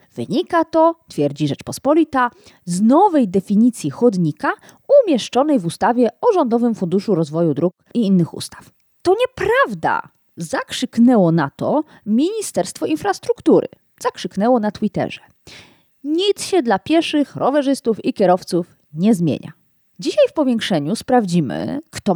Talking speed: 115 wpm